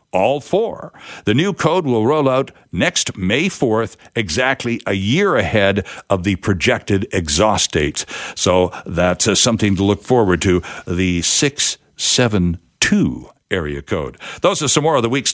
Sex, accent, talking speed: male, American, 155 wpm